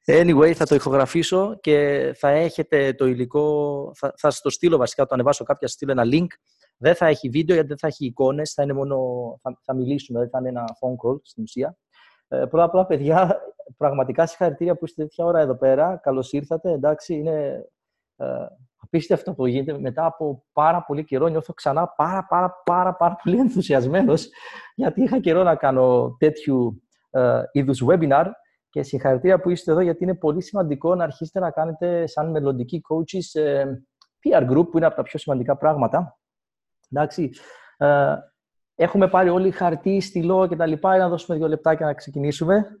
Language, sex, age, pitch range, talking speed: Greek, male, 30-49, 140-170 Hz, 175 wpm